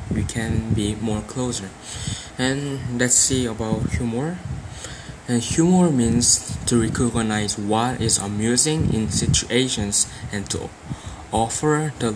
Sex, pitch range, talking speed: male, 105-125 Hz, 115 wpm